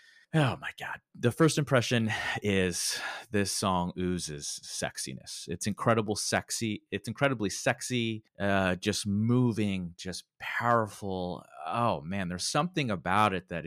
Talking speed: 125 wpm